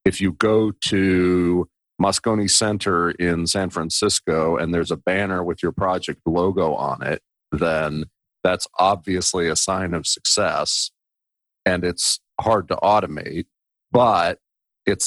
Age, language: 40-59, English